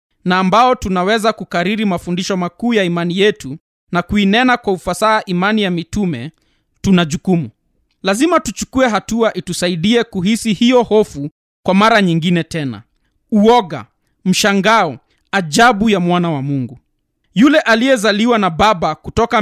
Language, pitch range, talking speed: Swahili, 175-230 Hz, 125 wpm